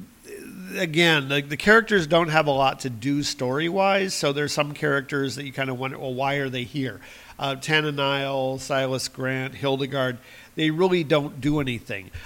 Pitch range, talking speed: 130-160 Hz, 175 wpm